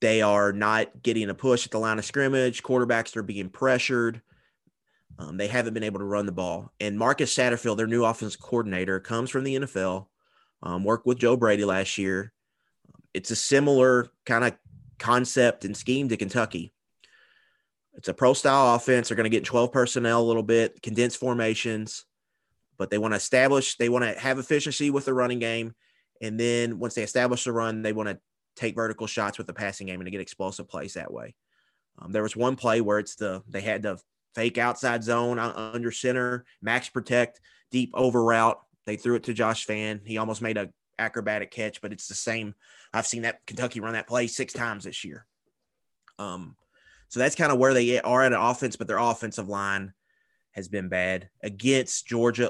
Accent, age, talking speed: American, 30-49, 200 wpm